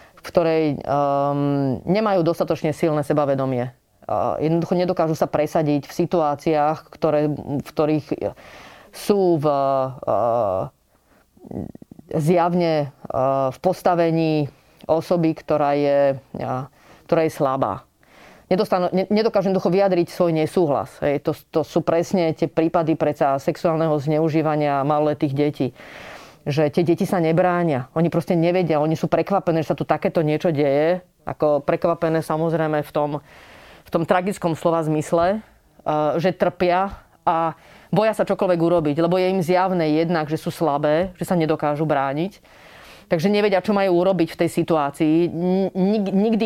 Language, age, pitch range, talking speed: Slovak, 30-49, 150-185 Hz, 130 wpm